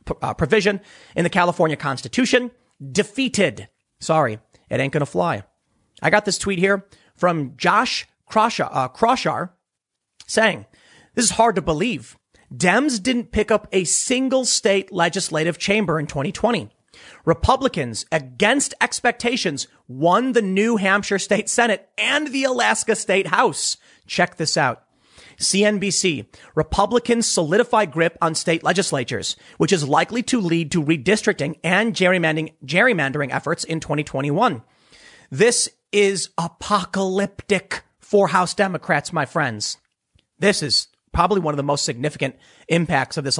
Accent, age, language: American, 30-49, English